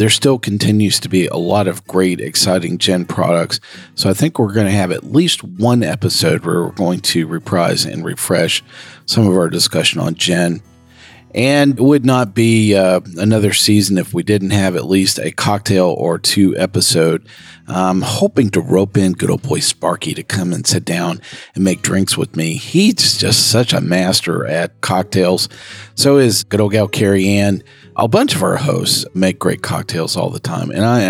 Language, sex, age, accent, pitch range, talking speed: English, male, 40-59, American, 95-115 Hz, 195 wpm